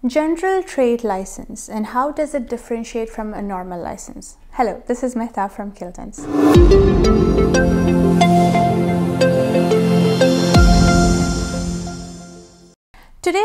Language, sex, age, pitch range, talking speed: English, female, 30-49, 195-260 Hz, 85 wpm